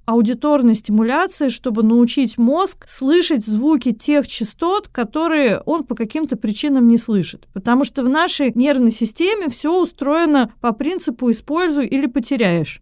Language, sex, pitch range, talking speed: Russian, female, 230-290 Hz, 135 wpm